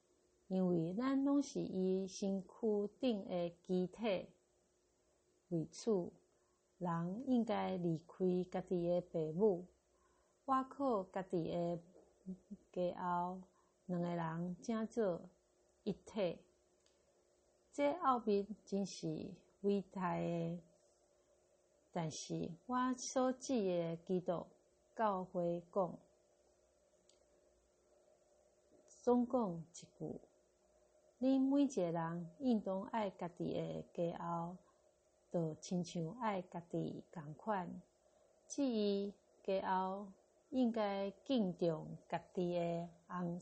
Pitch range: 175-245 Hz